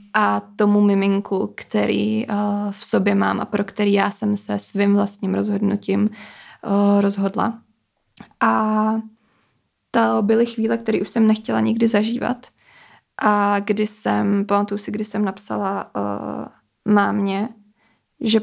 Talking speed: 130 wpm